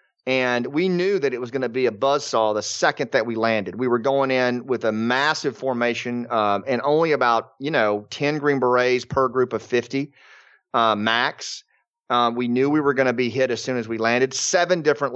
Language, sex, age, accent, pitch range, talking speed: English, male, 30-49, American, 120-140 Hz, 220 wpm